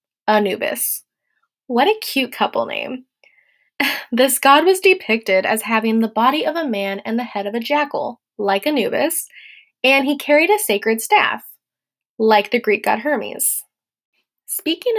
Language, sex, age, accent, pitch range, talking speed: English, female, 10-29, American, 225-320 Hz, 150 wpm